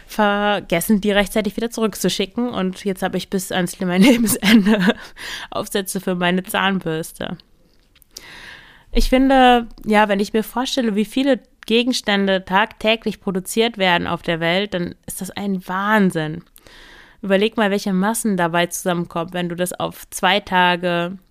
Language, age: German, 20-39